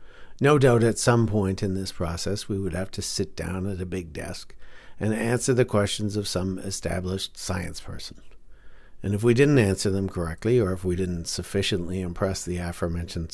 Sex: male